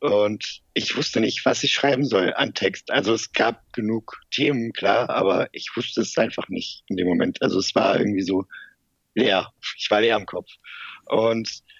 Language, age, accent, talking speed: German, 50-69, German, 190 wpm